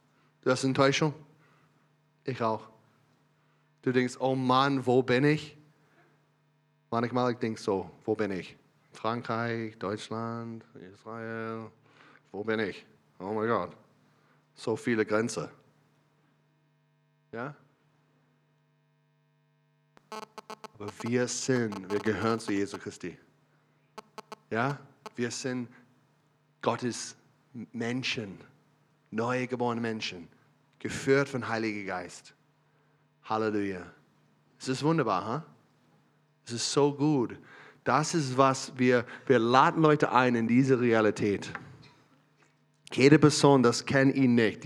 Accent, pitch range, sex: German, 115-150 Hz, male